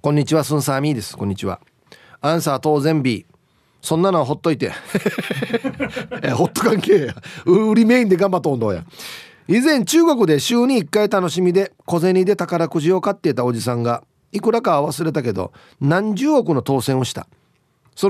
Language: Japanese